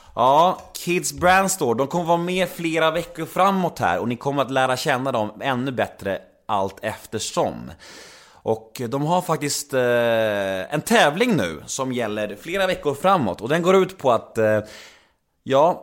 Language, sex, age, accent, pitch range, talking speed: Swedish, male, 20-39, native, 120-180 Hz, 165 wpm